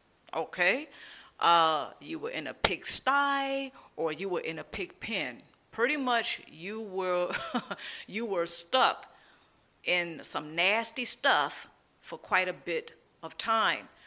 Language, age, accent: English, 40-59, American